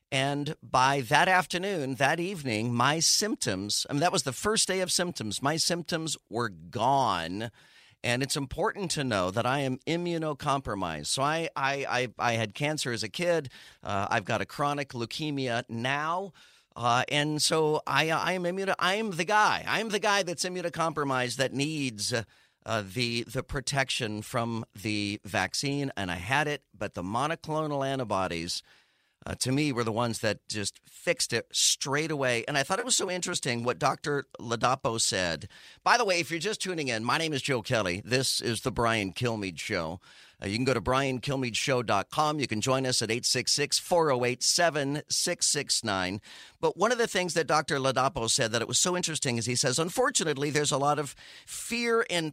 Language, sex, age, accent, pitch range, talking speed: English, male, 40-59, American, 120-160 Hz, 180 wpm